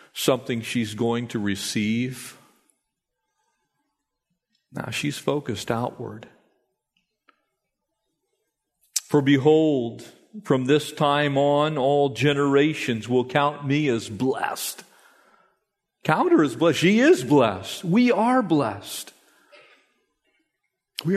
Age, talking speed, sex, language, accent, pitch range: 50-69, 95 wpm, male, English, American, 120-145 Hz